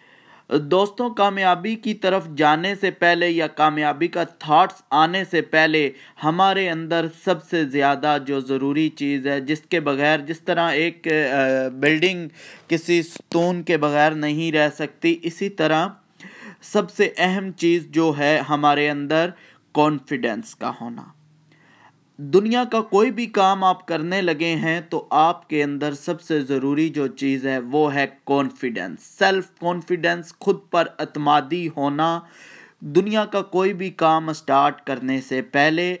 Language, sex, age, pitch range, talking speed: Urdu, male, 20-39, 140-175 Hz, 145 wpm